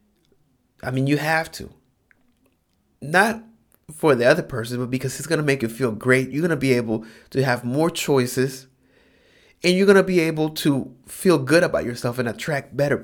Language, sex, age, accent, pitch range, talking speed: English, male, 30-49, American, 120-160 Hz, 195 wpm